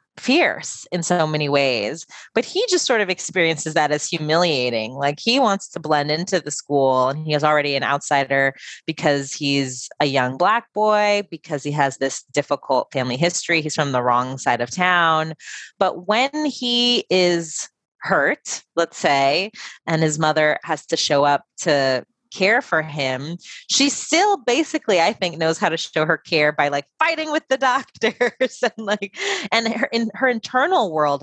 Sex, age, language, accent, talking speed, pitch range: female, 20-39, English, American, 175 wpm, 140-190 Hz